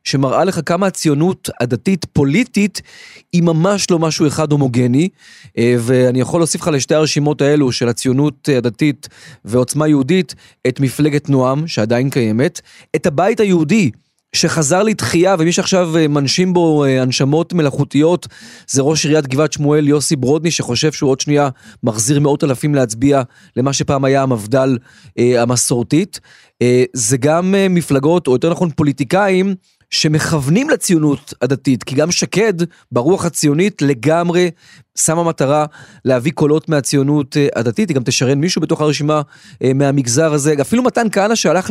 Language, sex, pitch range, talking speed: Hebrew, male, 135-175 Hz, 135 wpm